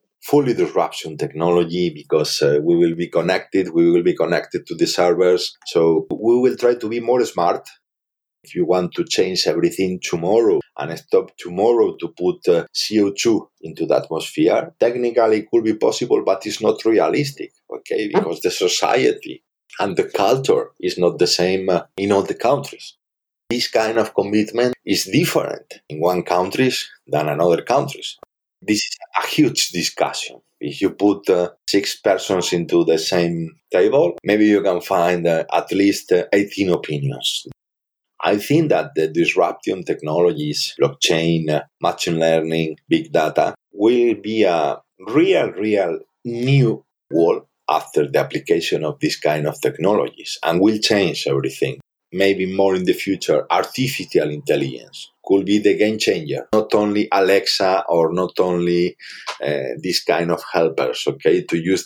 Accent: Spanish